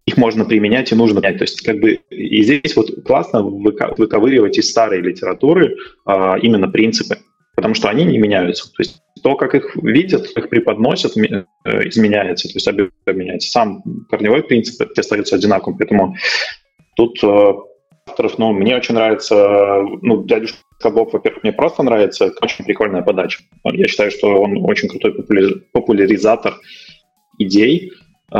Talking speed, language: 145 wpm, Russian